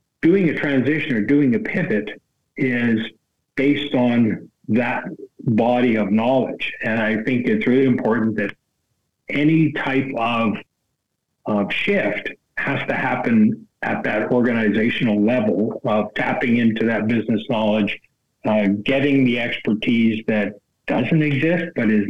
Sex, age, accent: male, 60-79, American